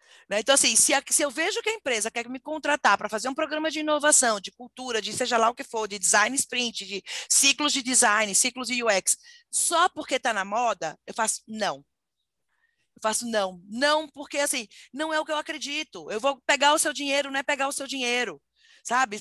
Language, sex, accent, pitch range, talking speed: Portuguese, female, Brazilian, 250-325 Hz, 210 wpm